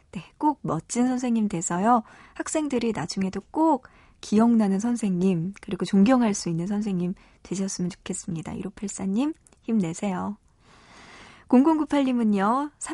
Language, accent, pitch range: Korean, native, 185-235 Hz